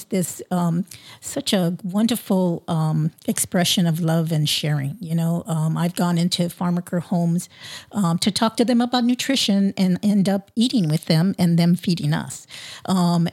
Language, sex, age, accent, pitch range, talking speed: English, female, 50-69, American, 170-200 Hz, 165 wpm